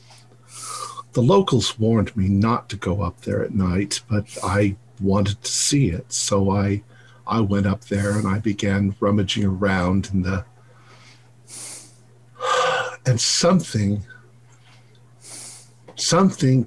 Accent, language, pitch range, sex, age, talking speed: American, English, 115-165 Hz, male, 50-69, 120 wpm